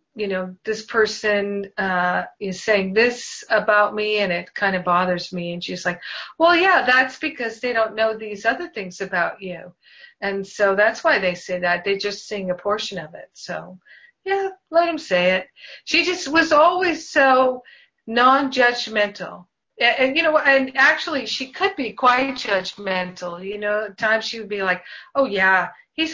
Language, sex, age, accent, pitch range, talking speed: English, female, 50-69, American, 190-255 Hz, 180 wpm